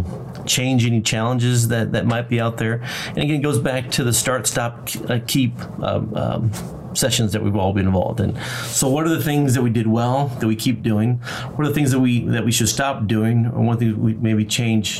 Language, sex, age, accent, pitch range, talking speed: English, male, 30-49, American, 110-130 Hz, 230 wpm